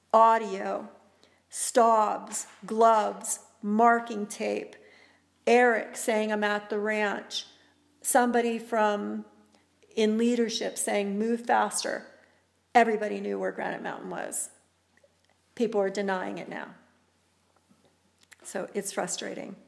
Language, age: English, 50-69